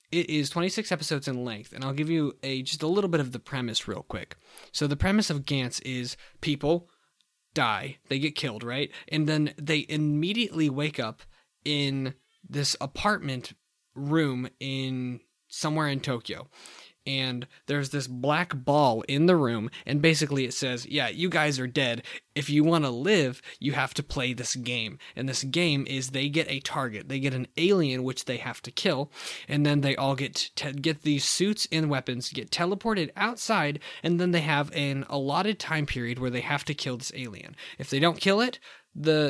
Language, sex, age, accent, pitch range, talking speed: English, male, 20-39, American, 130-155 Hz, 190 wpm